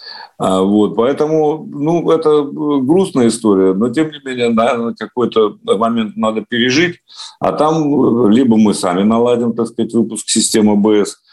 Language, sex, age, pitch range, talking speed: Russian, male, 50-69, 95-145 Hz, 140 wpm